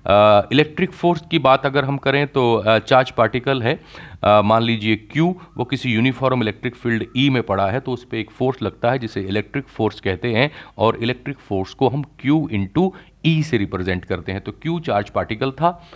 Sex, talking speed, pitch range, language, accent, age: male, 210 wpm, 100-140 Hz, Hindi, native, 40-59